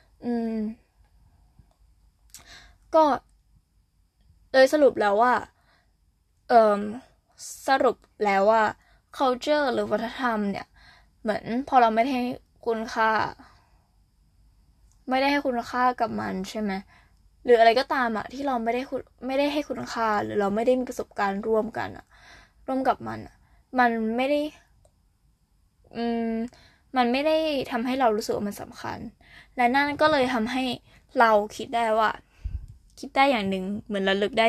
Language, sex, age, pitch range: Thai, female, 10-29, 210-255 Hz